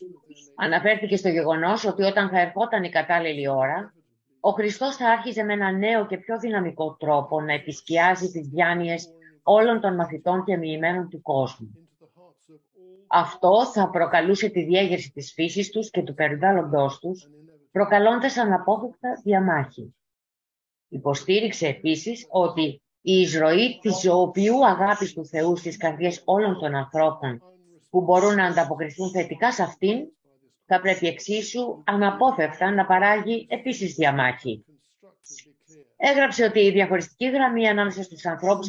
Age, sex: 30-49, female